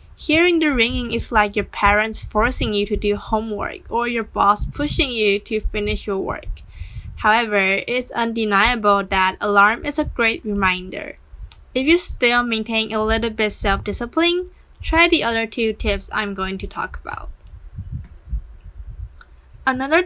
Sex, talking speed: female, 145 wpm